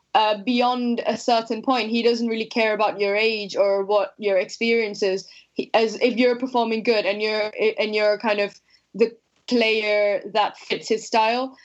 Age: 10-29